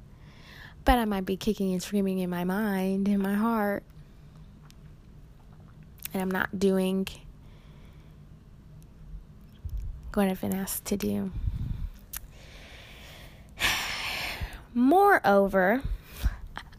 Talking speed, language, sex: 85 wpm, English, female